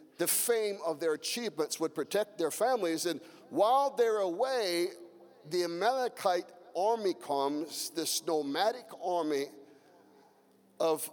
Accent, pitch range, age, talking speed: American, 165-230 Hz, 50-69, 115 wpm